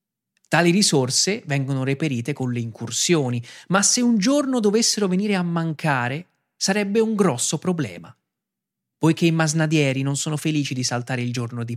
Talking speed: 155 wpm